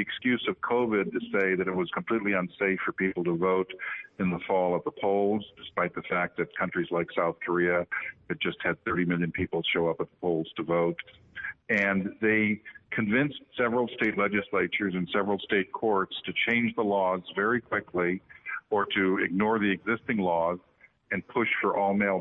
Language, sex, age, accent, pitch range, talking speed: English, male, 50-69, American, 90-105 Hz, 180 wpm